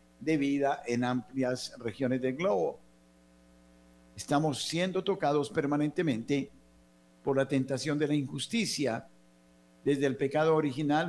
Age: 50-69